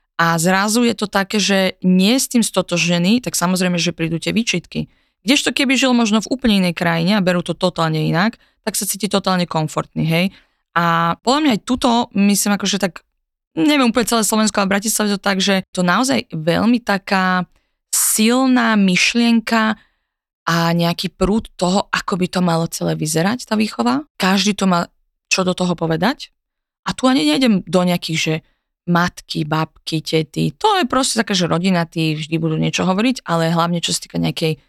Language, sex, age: Slovak, female, 20-39